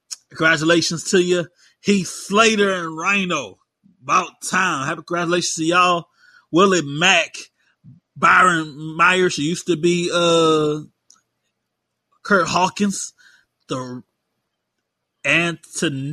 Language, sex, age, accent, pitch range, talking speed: English, male, 30-49, American, 160-195 Hz, 100 wpm